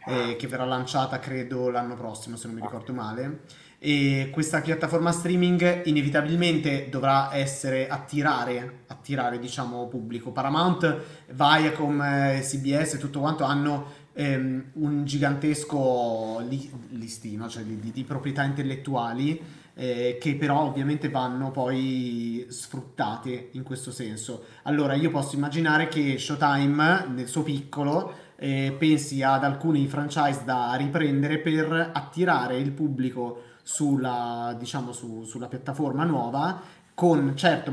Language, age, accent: Italian, 30-49, native